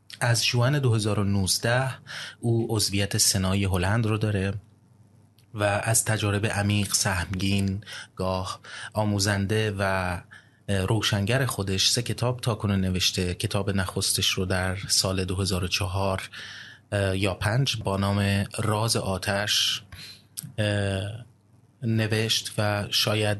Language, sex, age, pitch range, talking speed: Persian, male, 30-49, 100-115 Hz, 95 wpm